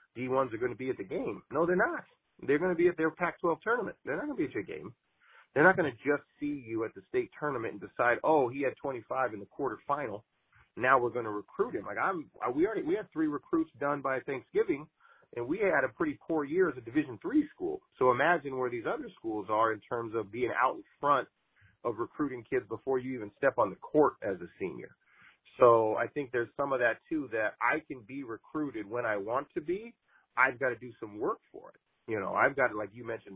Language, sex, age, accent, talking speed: English, male, 40-59, American, 245 wpm